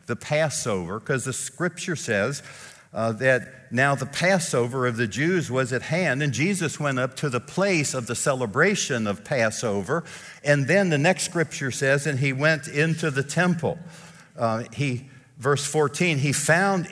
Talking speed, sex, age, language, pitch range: 165 wpm, male, 60-79, English, 130-165 Hz